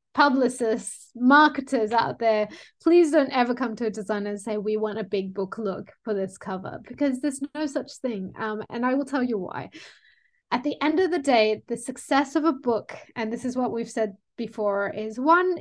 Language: English